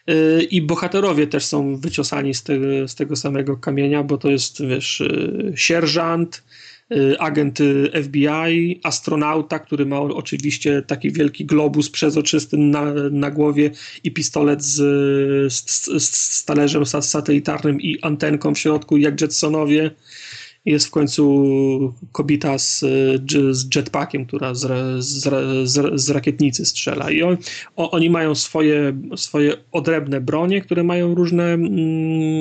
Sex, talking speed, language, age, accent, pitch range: male, 120 wpm, Polish, 30-49, native, 140-165 Hz